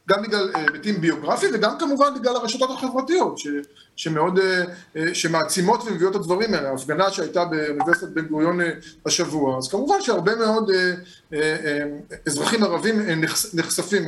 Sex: male